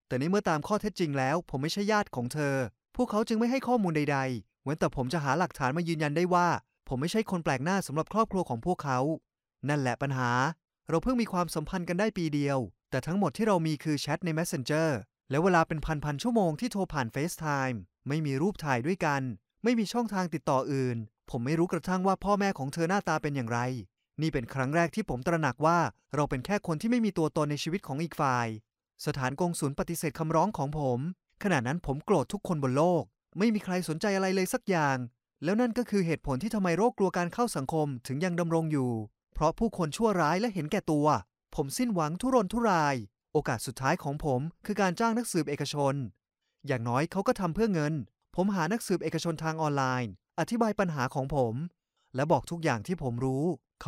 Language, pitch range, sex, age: Thai, 135-185 Hz, male, 20-39